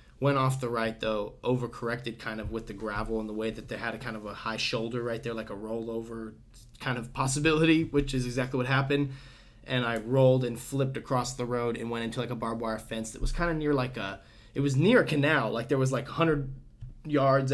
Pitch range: 115-135 Hz